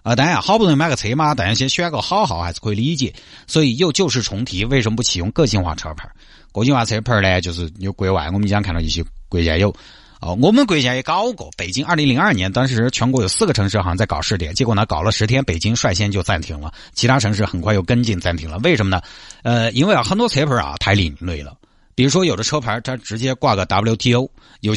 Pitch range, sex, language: 100-140 Hz, male, Chinese